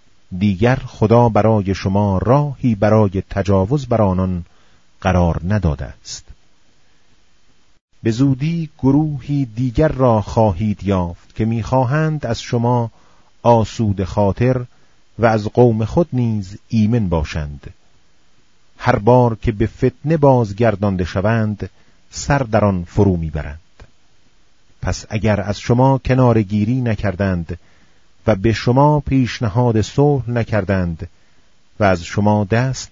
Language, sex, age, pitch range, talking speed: Persian, male, 40-59, 95-125 Hz, 115 wpm